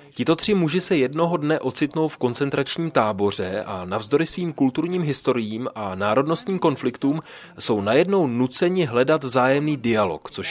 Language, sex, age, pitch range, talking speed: Czech, male, 30-49, 115-150 Hz, 145 wpm